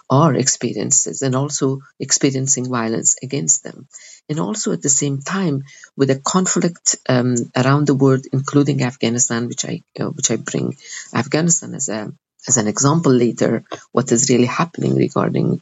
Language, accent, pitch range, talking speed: English, Italian, 125-145 Hz, 160 wpm